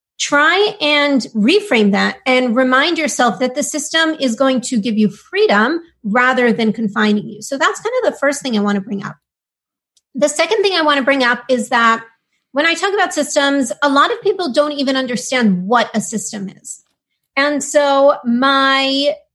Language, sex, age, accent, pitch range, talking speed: English, female, 30-49, American, 235-315 Hz, 190 wpm